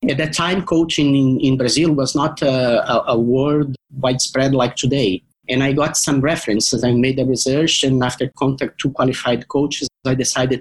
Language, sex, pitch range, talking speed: English, male, 130-160 Hz, 170 wpm